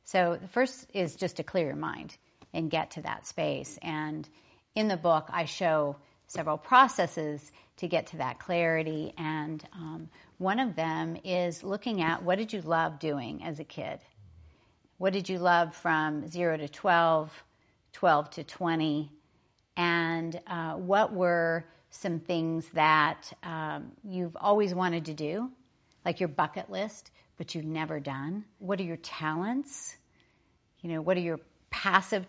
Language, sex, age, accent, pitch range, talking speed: Hindi, female, 50-69, American, 155-190 Hz, 160 wpm